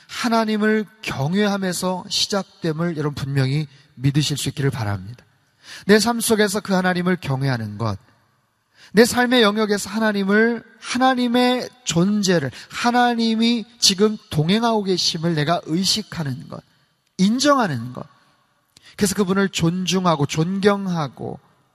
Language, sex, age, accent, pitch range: Korean, male, 30-49, native, 145-200 Hz